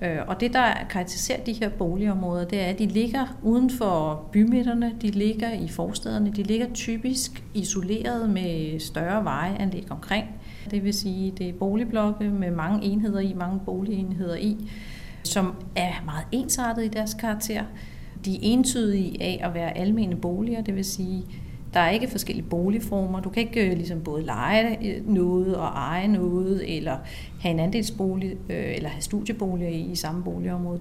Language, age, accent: Danish, 40-59, native